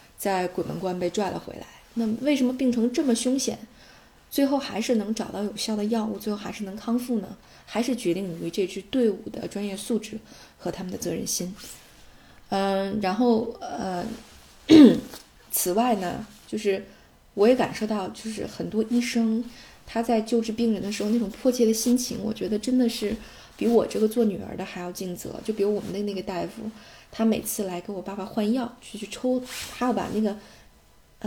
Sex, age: female, 20-39